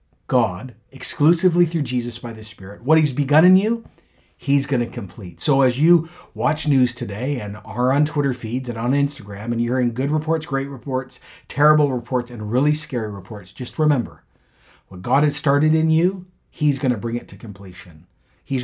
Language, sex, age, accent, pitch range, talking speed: English, male, 50-69, American, 95-140 Hz, 190 wpm